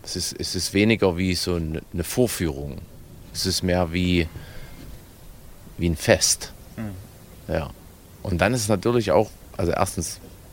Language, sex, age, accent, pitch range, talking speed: German, male, 30-49, German, 85-95 Hz, 140 wpm